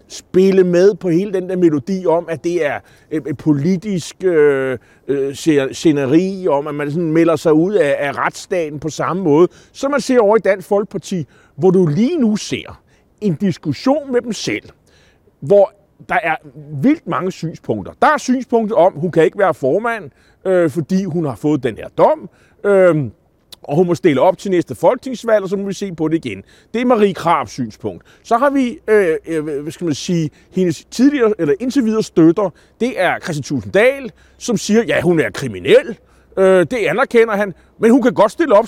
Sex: male